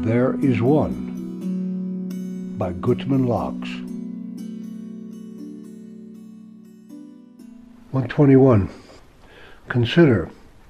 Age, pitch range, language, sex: 60-79, 115-145 Hz, English, male